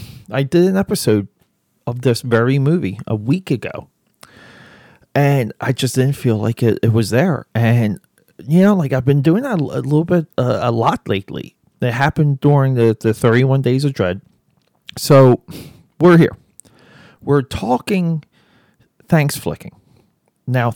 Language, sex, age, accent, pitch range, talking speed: English, male, 40-59, American, 115-150 Hz, 155 wpm